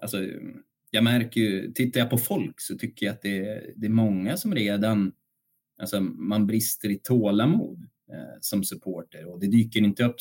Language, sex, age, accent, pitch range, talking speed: Swedish, male, 30-49, native, 95-120 Hz, 190 wpm